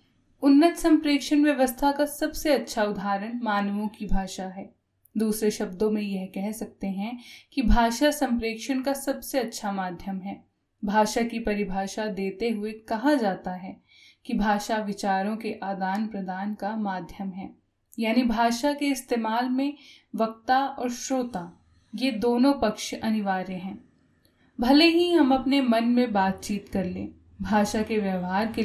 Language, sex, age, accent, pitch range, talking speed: Hindi, female, 10-29, native, 195-245 Hz, 145 wpm